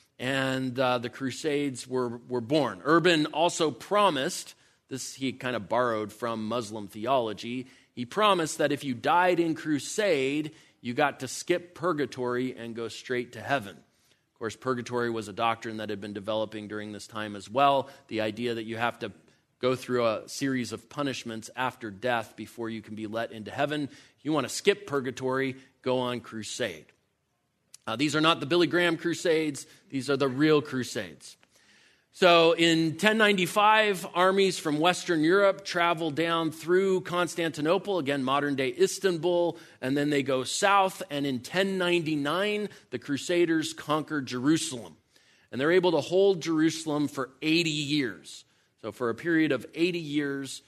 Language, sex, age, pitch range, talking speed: English, male, 30-49, 120-165 Hz, 160 wpm